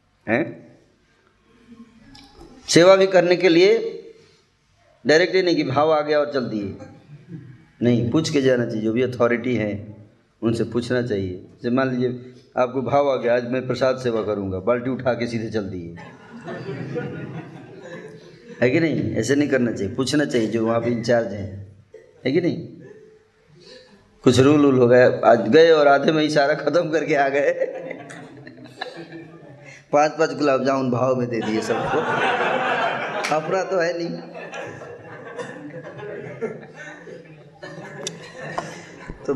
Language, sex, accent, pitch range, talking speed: Hindi, male, native, 120-170 Hz, 145 wpm